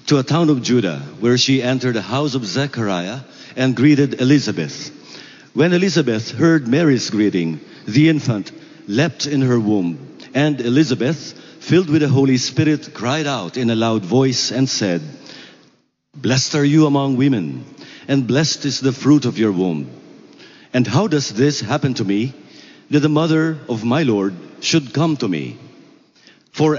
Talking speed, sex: 160 wpm, male